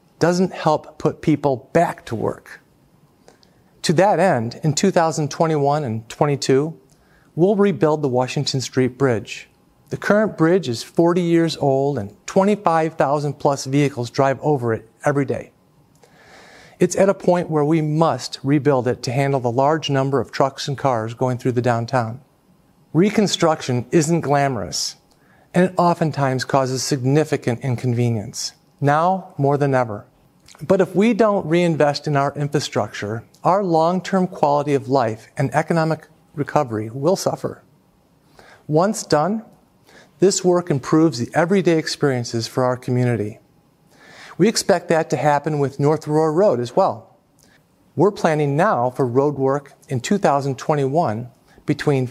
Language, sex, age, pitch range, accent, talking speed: English, male, 50-69, 130-165 Hz, American, 140 wpm